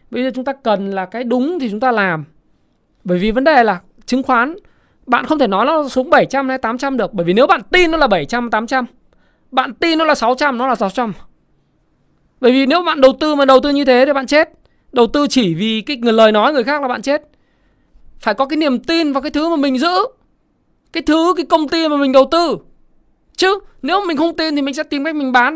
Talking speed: 245 wpm